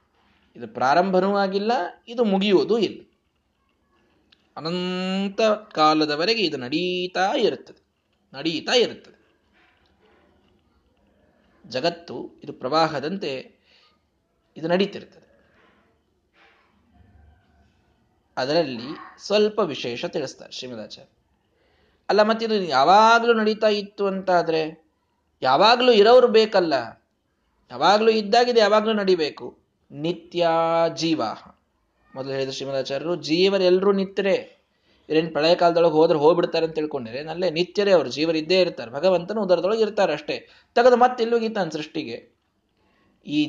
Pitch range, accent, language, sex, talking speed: 155-210 Hz, native, Kannada, male, 90 wpm